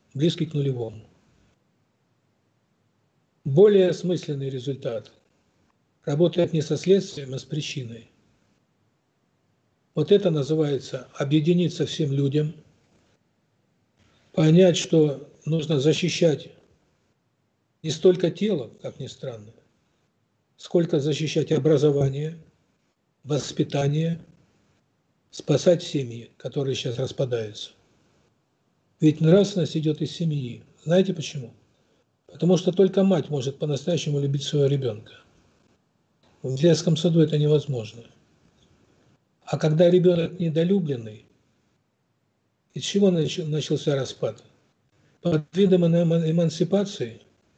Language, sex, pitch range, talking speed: Russian, male, 135-170 Hz, 90 wpm